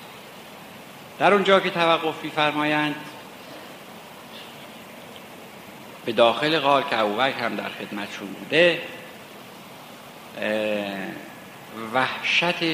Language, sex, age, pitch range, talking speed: Persian, male, 50-69, 105-145 Hz, 60 wpm